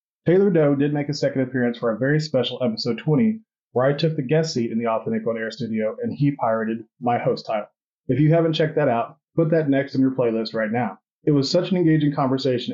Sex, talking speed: male, 240 wpm